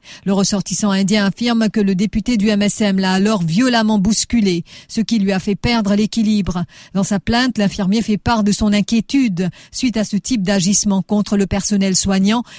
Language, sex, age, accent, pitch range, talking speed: English, female, 40-59, French, 185-220 Hz, 180 wpm